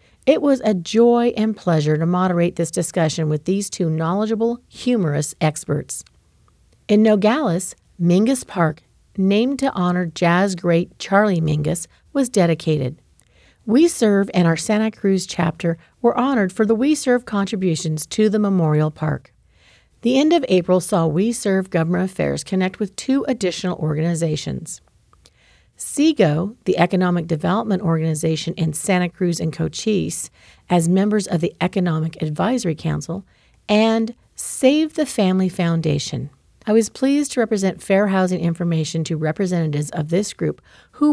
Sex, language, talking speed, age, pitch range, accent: female, English, 140 wpm, 50-69, 160-215 Hz, American